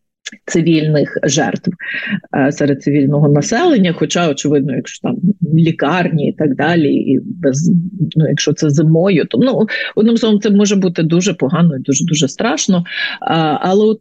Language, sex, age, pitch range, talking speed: Ukrainian, female, 30-49, 150-195 Hz, 150 wpm